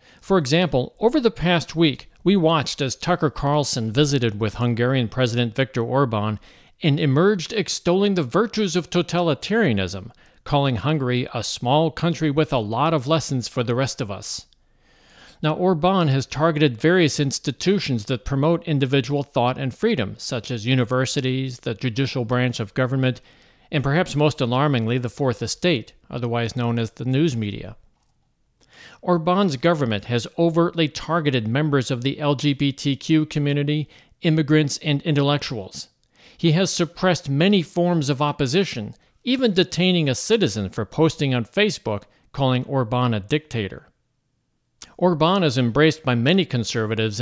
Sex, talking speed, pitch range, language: male, 140 wpm, 125-165 Hz, English